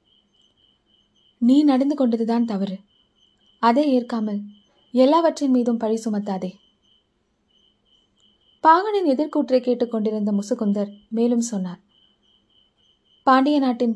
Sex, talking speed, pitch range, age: female, 75 wpm, 205-265 Hz, 20-39